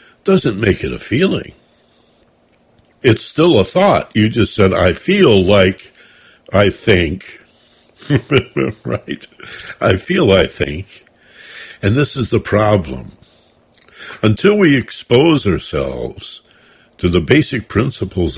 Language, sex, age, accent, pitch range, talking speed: English, male, 60-79, American, 90-120 Hz, 115 wpm